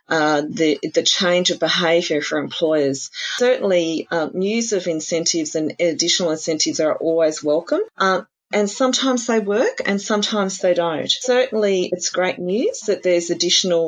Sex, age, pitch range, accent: female, 40-59, 160-195 Hz, Australian